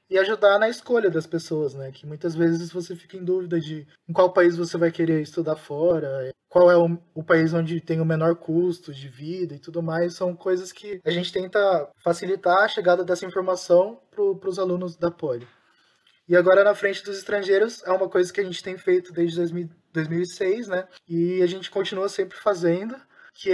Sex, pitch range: male, 170-190 Hz